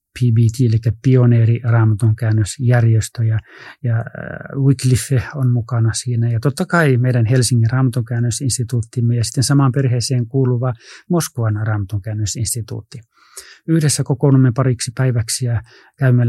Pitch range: 115-130 Hz